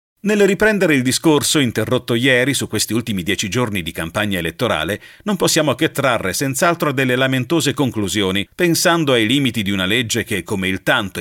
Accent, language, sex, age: native, Italian, male, 40-59